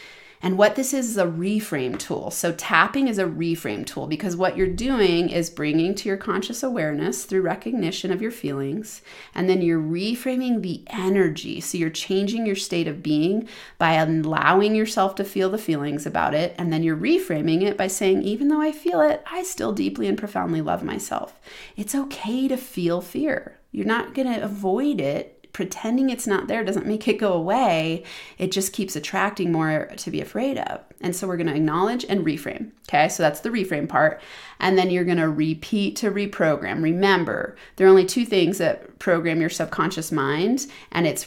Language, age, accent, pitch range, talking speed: English, 30-49, American, 165-215 Hz, 195 wpm